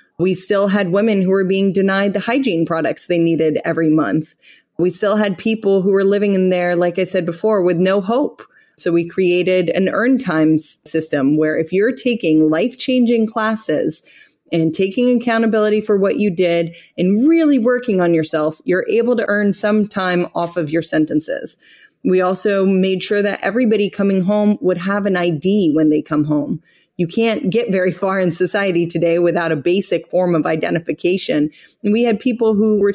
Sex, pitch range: female, 170-210 Hz